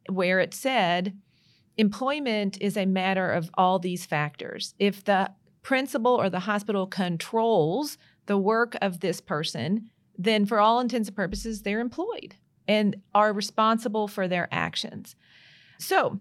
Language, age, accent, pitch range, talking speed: English, 40-59, American, 190-225 Hz, 140 wpm